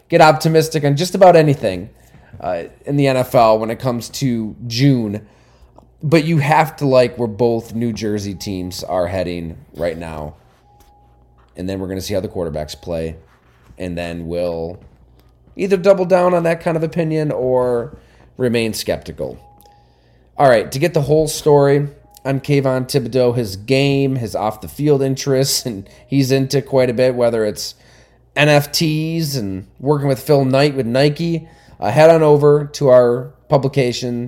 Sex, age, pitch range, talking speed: male, 20-39, 115-160 Hz, 160 wpm